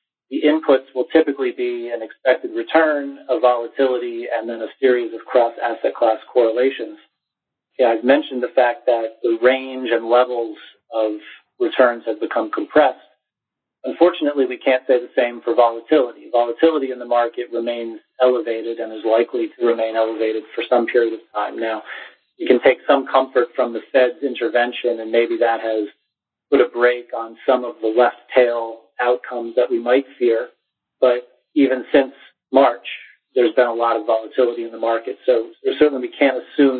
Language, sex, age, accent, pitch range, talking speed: English, male, 40-59, American, 115-135 Hz, 170 wpm